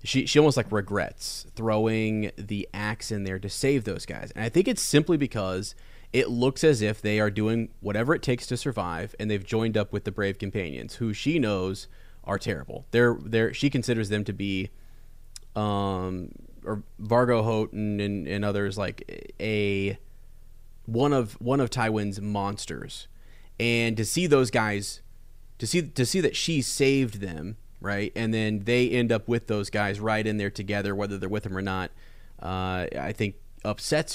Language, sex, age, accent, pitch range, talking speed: English, male, 30-49, American, 100-120 Hz, 180 wpm